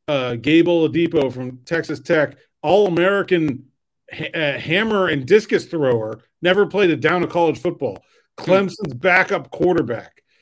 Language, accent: English, American